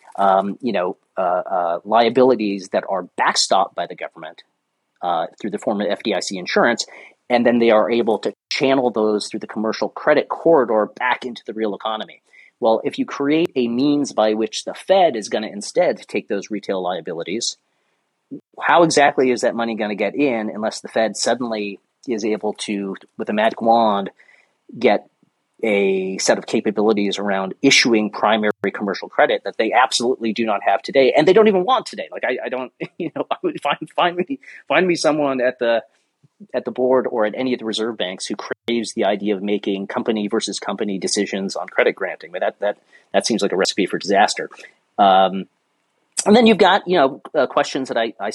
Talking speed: 195 wpm